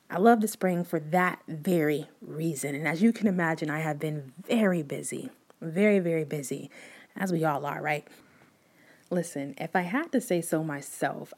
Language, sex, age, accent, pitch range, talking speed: English, female, 20-39, American, 155-230 Hz, 180 wpm